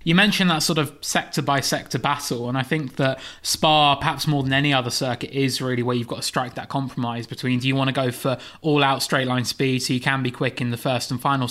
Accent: British